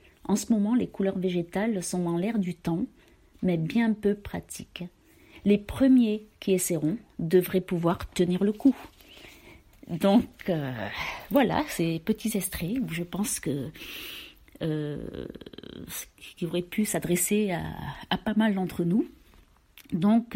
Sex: female